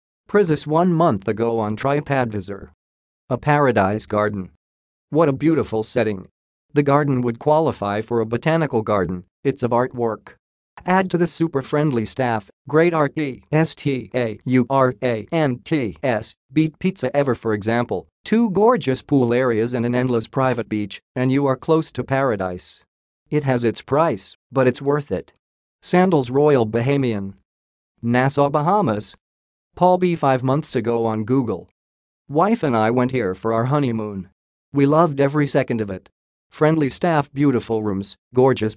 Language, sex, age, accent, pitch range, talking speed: English, male, 40-59, American, 110-150 Hz, 140 wpm